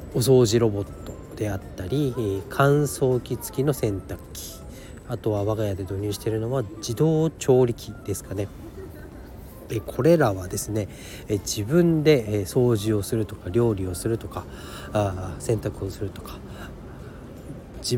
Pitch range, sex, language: 100-130 Hz, male, Japanese